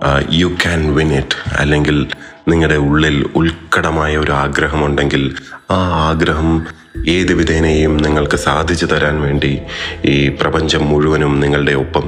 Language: Malayalam